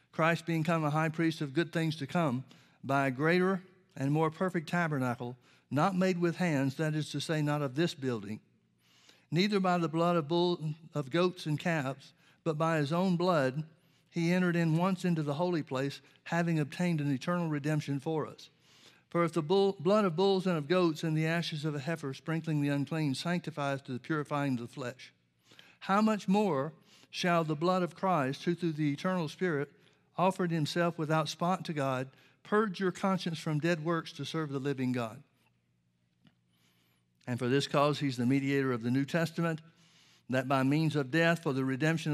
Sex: male